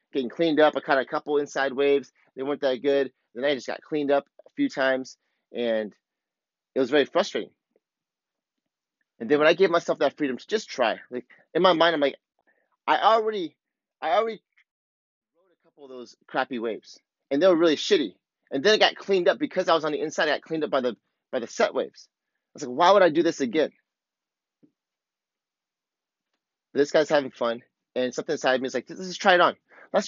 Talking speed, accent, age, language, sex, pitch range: 215 wpm, American, 30-49, English, male, 140-175 Hz